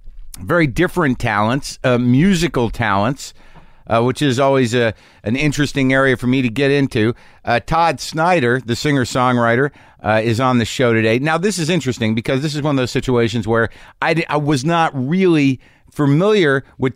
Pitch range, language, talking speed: 115-145 Hz, English, 175 wpm